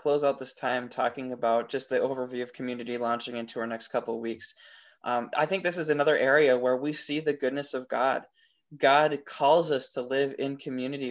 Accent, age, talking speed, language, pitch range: American, 20-39, 210 wpm, English, 125-150 Hz